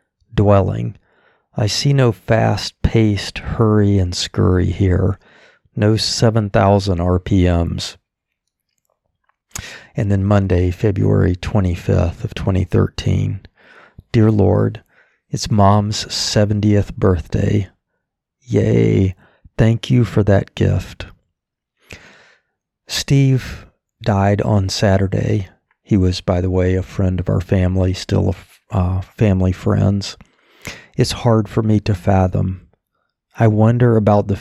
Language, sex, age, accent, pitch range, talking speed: English, male, 50-69, American, 95-105 Hz, 105 wpm